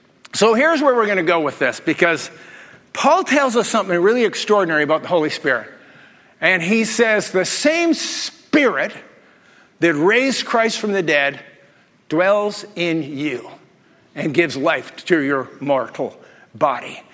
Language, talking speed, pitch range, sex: English, 145 wpm, 190-290 Hz, male